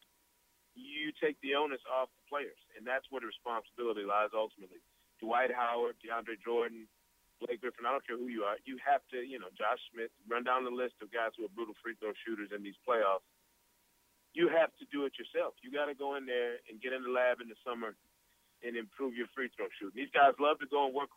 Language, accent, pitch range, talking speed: English, American, 120-145 Hz, 225 wpm